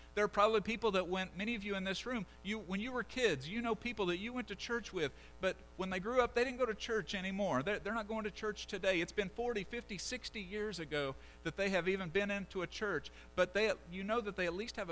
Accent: American